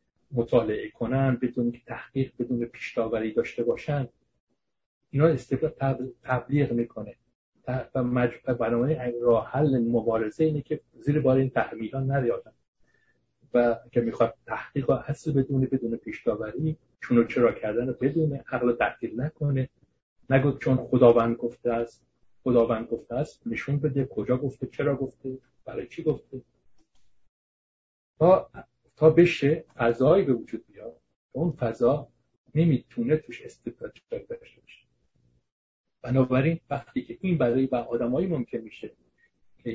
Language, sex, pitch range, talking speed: English, male, 115-140 Hz, 125 wpm